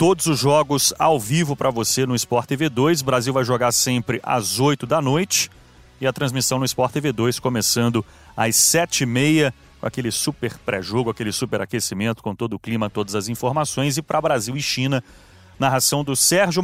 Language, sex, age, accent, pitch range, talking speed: Portuguese, male, 30-49, Brazilian, 115-140 Hz, 190 wpm